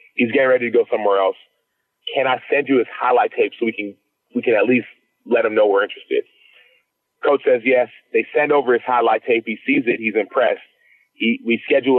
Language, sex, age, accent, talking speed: English, male, 30-49, American, 215 wpm